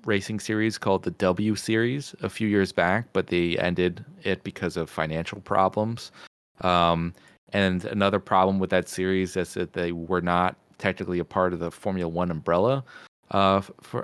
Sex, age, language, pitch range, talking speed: male, 30-49, English, 90-105 Hz, 170 wpm